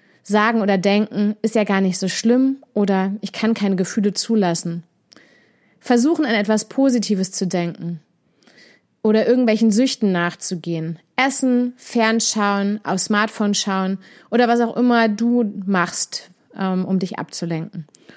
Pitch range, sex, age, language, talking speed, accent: 185-240 Hz, female, 30-49, German, 130 wpm, German